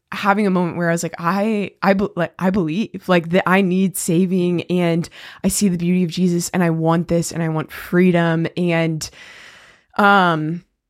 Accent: American